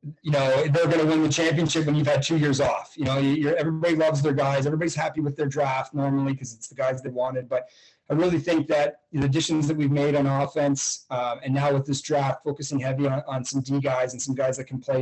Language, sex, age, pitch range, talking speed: English, male, 30-49, 135-150 Hz, 255 wpm